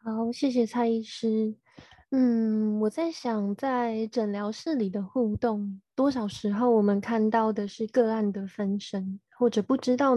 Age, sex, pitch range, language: 20-39, female, 200-240 Hz, Chinese